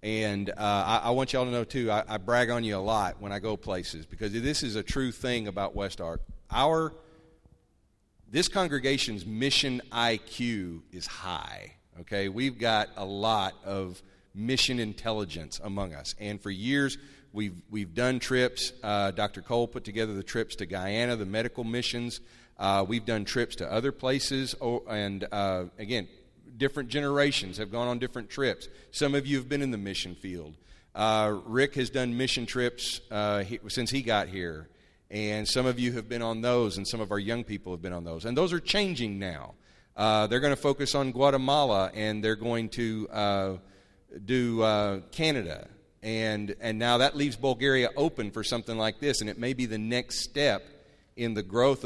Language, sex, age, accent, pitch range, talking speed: English, male, 40-59, American, 100-125 Hz, 190 wpm